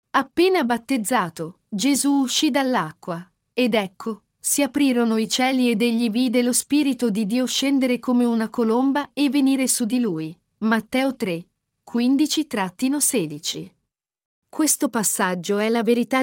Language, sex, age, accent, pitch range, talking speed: Italian, female, 40-59, native, 220-270 Hz, 130 wpm